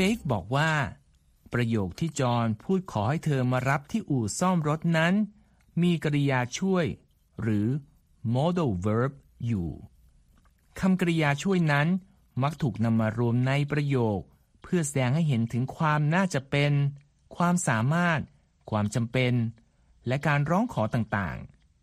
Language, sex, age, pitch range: Thai, male, 60-79, 115-165 Hz